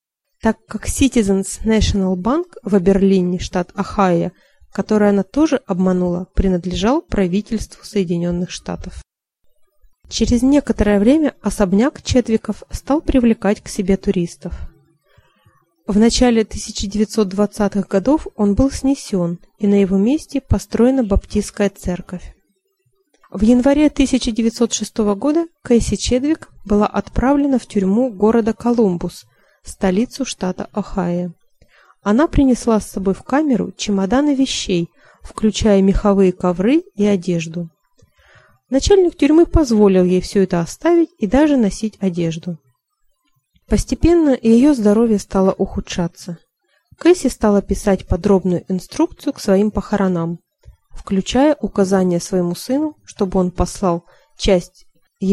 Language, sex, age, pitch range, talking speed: Russian, female, 20-39, 185-250 Hz, 110 wpm